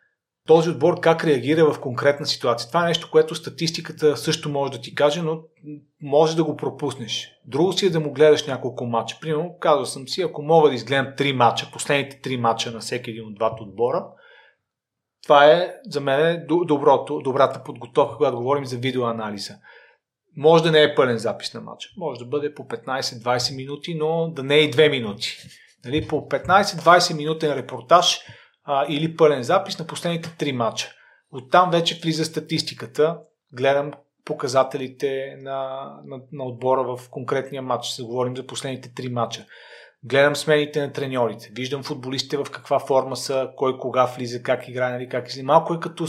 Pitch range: 125-155 Hz